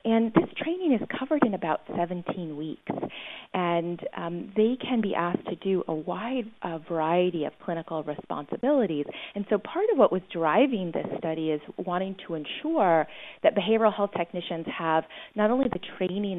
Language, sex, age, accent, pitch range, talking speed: English, female, 30-49, American, 155-205 Hz, 165 wpm